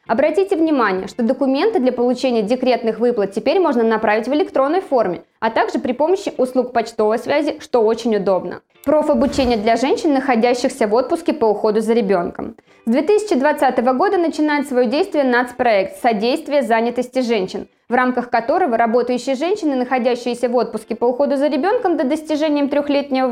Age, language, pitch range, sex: 20-39, Russian, 235-295 Hz, female